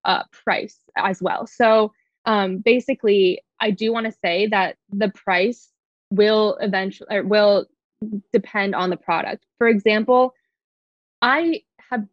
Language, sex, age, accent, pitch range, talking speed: English, female, 20-39, American, 190-235 Hz, 135 wpm